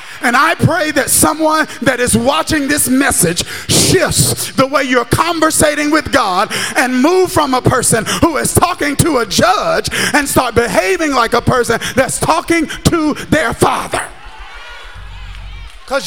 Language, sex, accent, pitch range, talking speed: English, male, American, 260-345 Hz, 150 wpm